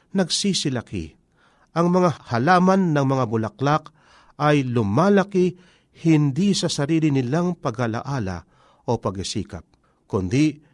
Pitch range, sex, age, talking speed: 115-165 Hz, male, 50-69, 95 wpm